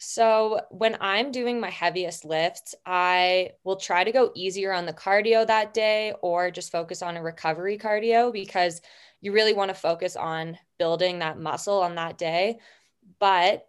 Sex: female